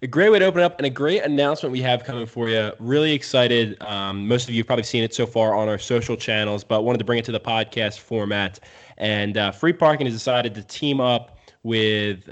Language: English